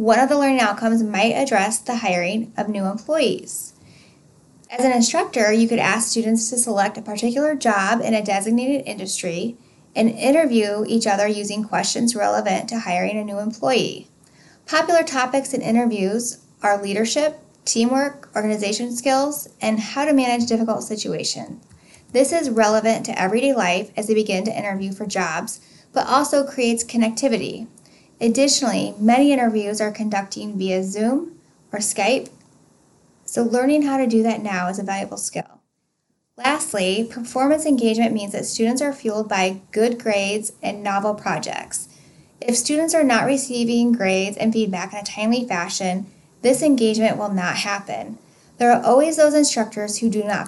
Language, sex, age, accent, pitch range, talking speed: English, female, 10-29, American, 205-255 Hz, 155 wpm